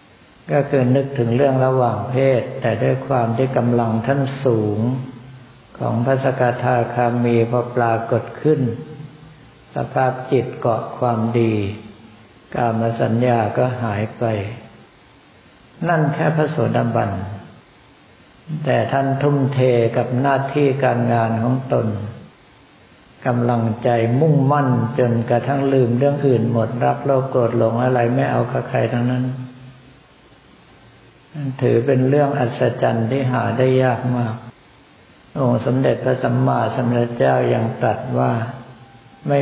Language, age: Thai, 60-79